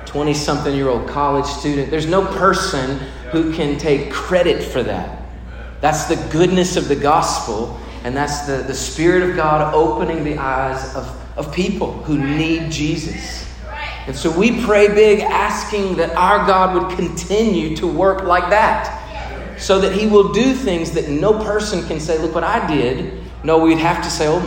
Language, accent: English, American